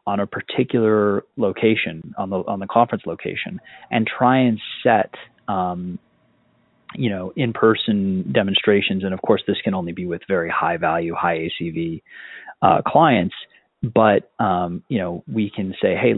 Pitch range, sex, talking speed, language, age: 90-110 Hz, male, 160 wpm, English, 30-49